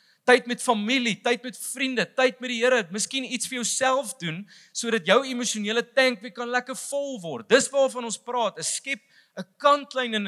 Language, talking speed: English, 210 wpm